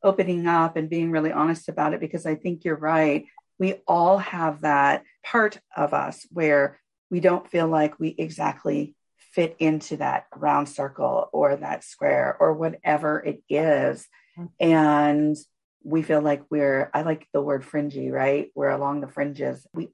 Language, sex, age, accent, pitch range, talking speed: English, female, 40-59, American, 150-185 Hz, 165 wpm